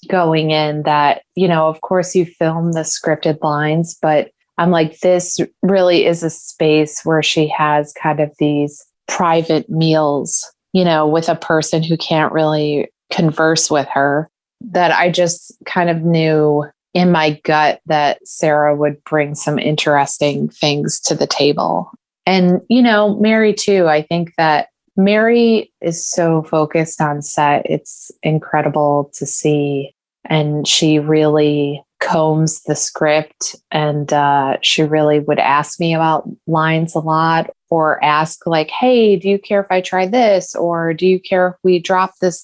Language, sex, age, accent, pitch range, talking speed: English, female, 20-39, American, 150-180 Hz, 160 wpm